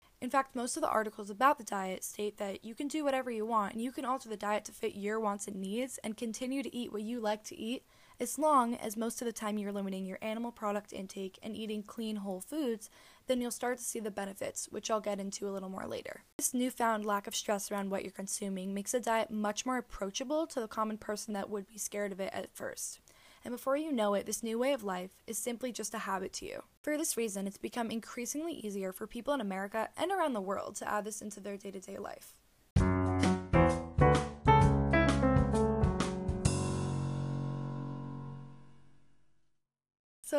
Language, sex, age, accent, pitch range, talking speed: English, female, 10-29, American, 195-245 Hz, 205 wpm